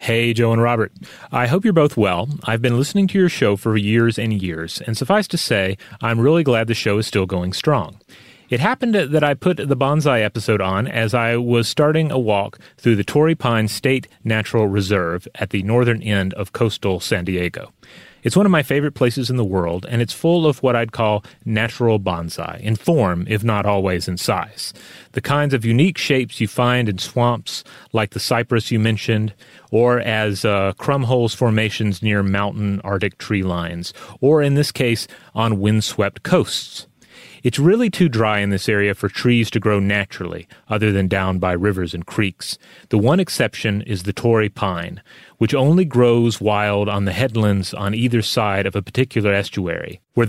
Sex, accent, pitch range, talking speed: male, American, 100-125 Hz, 190 wpm